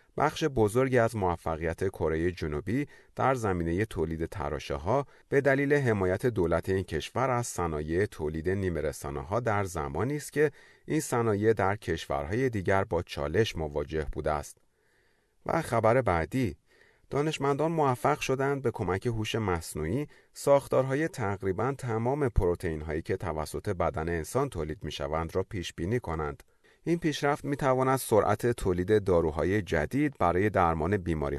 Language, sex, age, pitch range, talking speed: Persian, male, 40-59, 85-130 Hz, 130 wpm